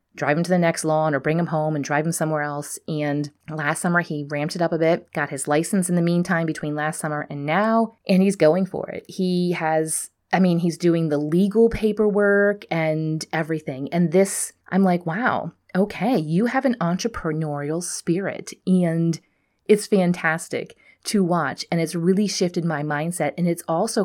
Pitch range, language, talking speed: 155-185 Hz, English, 190 wpm